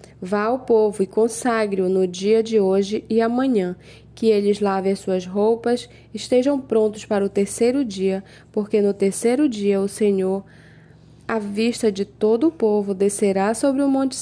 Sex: female